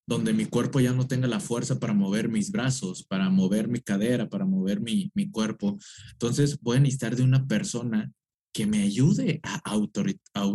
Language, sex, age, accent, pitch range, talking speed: Spanish, male, 20-39, Mexican, 125-185 Hz, 195 wpm